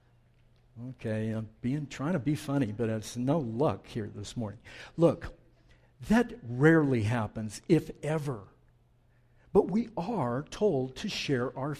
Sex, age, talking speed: male, 60-79, 130 wpm